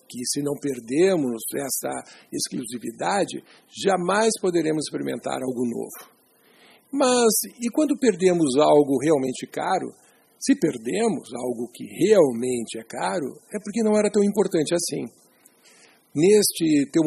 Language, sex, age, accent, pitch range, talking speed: Portuguese, male, 60-79, Brazilian, 150-210 Hz, 120 wpm